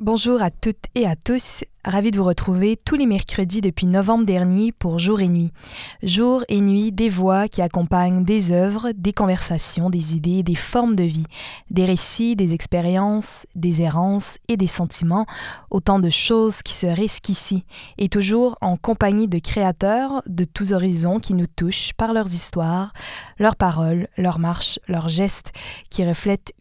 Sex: female